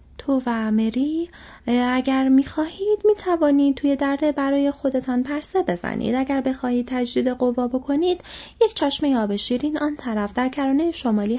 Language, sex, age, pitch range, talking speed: Persian, female, 30-49, 195-270 Hz, 125 wpm